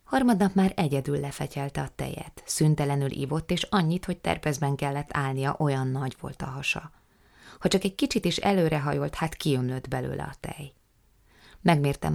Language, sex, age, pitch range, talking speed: Hungarian, female, 20-39, 130-165 Hz, 155 wpm